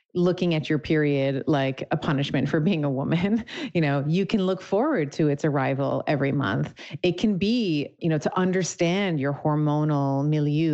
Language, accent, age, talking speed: English, American, 30-49, 180 wpm